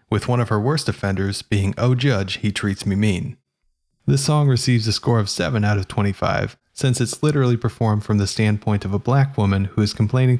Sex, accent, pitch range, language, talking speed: male, American, 100-120 Hz, English, 215 wpm